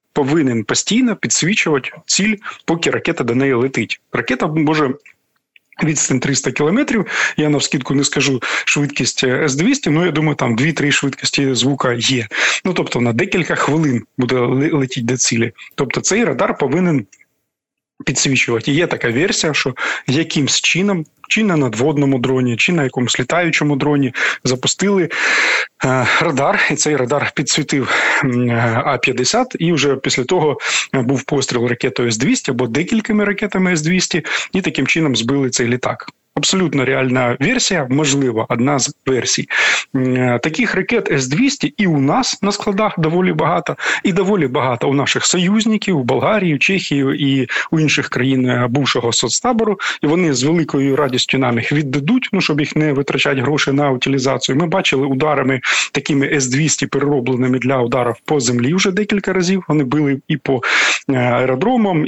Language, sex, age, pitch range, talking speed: Ukrainian, male, 30-49, 130-170 Hz, 145 wpm